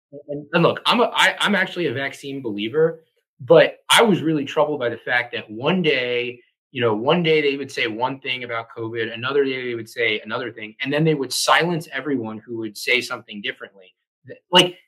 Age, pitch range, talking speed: 20-39, 120-160 Hz, 205 wpm